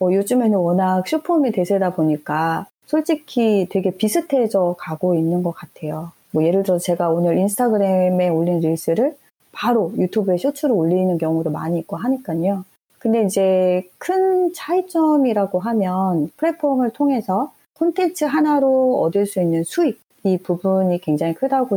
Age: 30-49